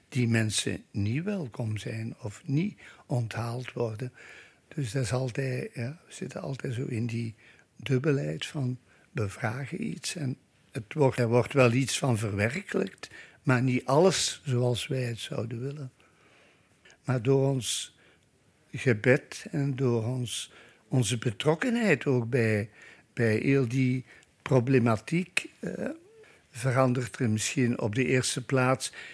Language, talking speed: Dutch, 115 wpm